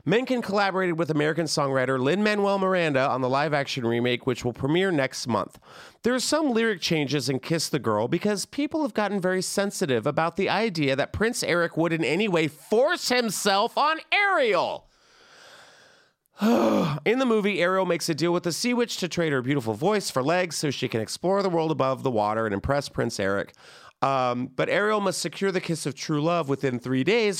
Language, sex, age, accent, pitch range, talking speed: English, male, 30-49, American, 130-200 Hz, 195 wpm